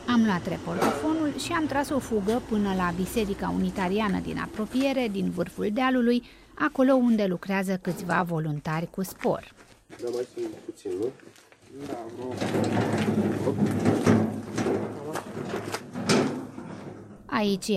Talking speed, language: 85 wpm, Romanian